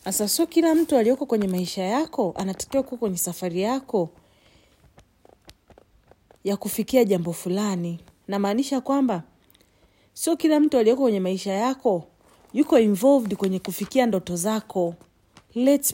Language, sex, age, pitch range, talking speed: English, female, 40-59, 170-255 Hz, 120 wpm